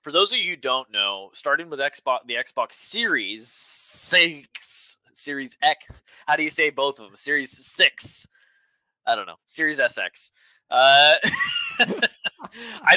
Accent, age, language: American, 20-39, English